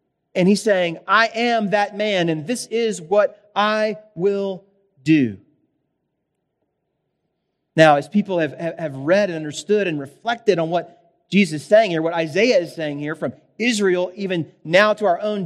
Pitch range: 165-210 Hz